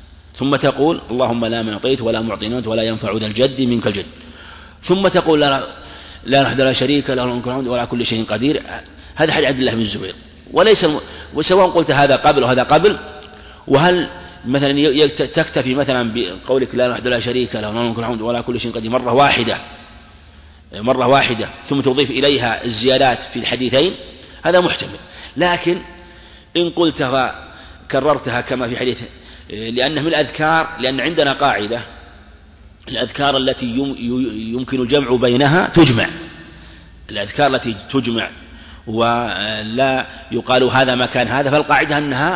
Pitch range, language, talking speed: 110-140 Hz, Arabic, 135 wpm